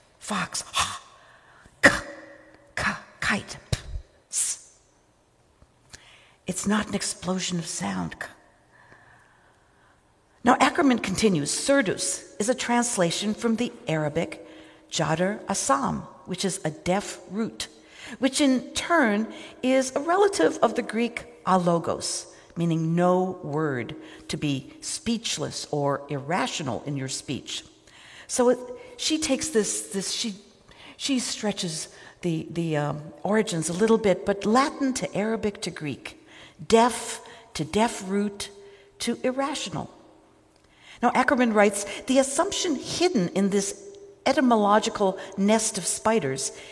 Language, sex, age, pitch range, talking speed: English, female, 60-79, 180-250 Hz, 120 wpm